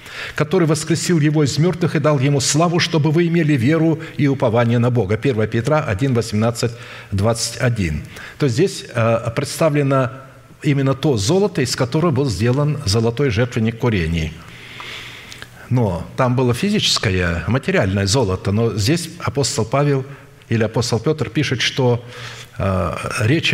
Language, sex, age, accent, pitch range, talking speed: Russian, male, 60-79, native, 115-155 Hz, 135 wpm